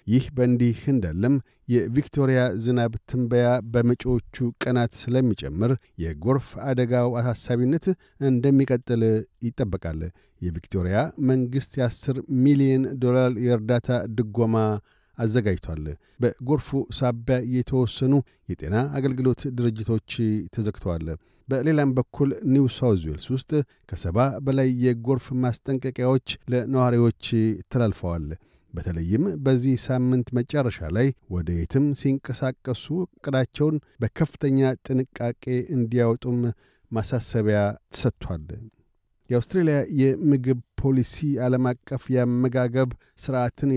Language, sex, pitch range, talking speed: Amharic, male, 115-130 Hz, 80 wpm